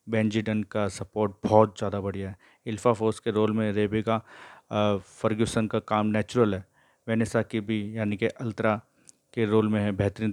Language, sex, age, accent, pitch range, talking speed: Hindi, male, 30-49, native, 105-115 Hz, 170 wpm